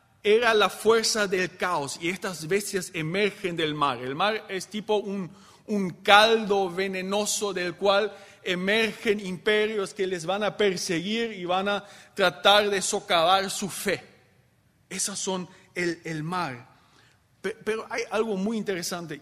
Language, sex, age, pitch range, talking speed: Spanish, male, 40-59, 165-215 Hz, 145 wpm